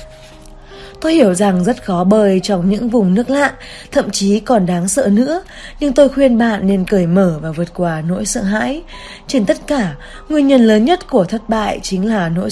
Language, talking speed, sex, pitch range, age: Vietnamese, 205 wpm, female, 185-235 Hz, 20-39